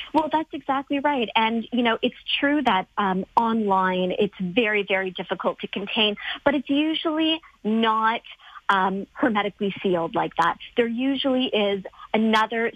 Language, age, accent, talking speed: English, 40-59, American, 145 wpm